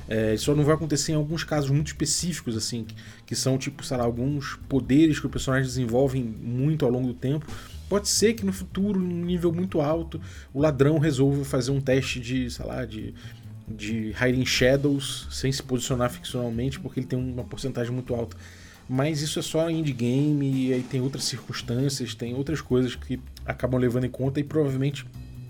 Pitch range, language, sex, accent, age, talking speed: 115-135 Hz, Portuguese, male, Brazilian, 20-39, 200 wpm